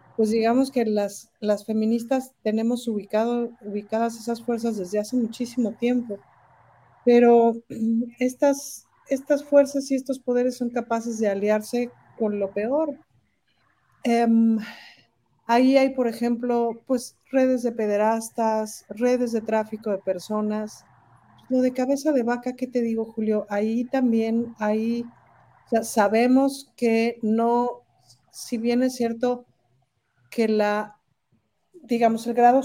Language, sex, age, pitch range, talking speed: Spanish, female, 50-69, 210-245 Hz, 125 wpm